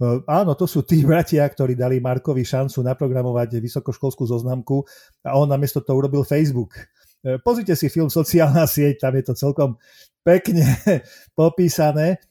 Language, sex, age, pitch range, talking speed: Slovak, male, 40-59, 125-155 Hz, 140 wpm